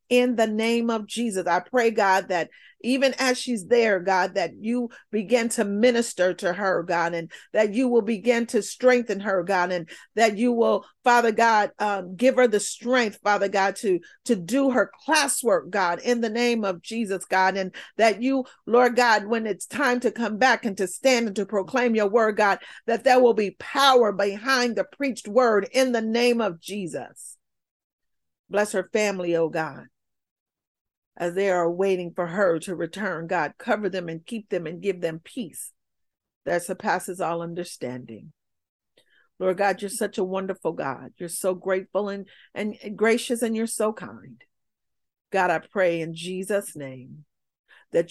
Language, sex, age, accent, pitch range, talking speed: English, female, 40-59, American, 175-235 Hz, 175 wpm